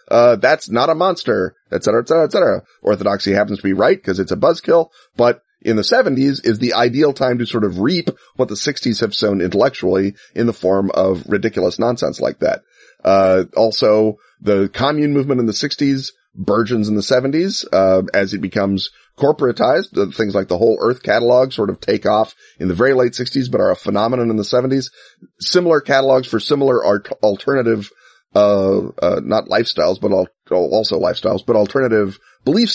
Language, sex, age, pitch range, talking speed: English, male, 30-49, 100-130 Hz, 190 wpm